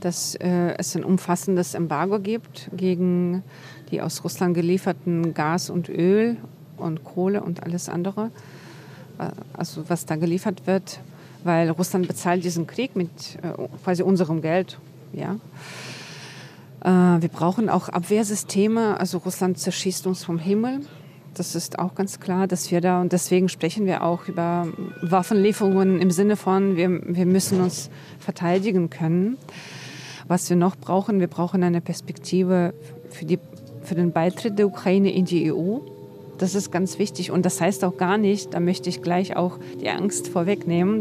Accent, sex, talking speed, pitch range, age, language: German, female, 155 wpm, 170-195 Hz, 40-59, German